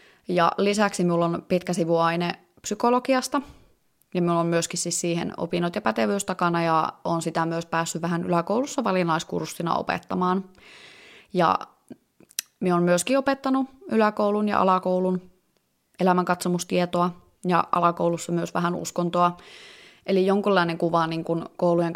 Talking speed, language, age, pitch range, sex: 125 wpm, Finnish, 20-39, 170-185 Hz, female